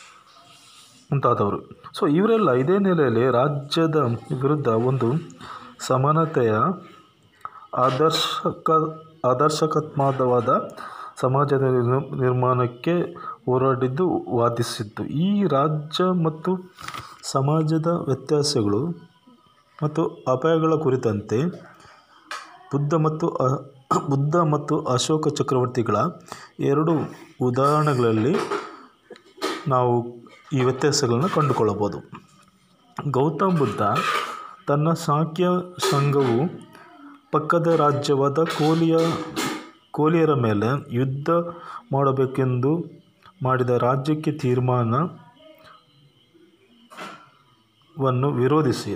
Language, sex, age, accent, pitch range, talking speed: Kannada, male, 30-49, native, 130-165 Hz, 65 wpm